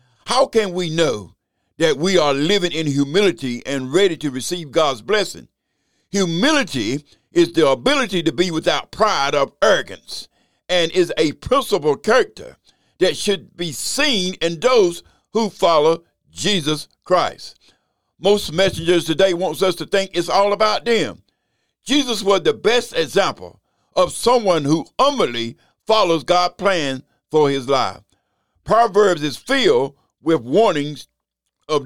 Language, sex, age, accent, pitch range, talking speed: English, male, 60-79, American, 150-200 Hz, 140 wpm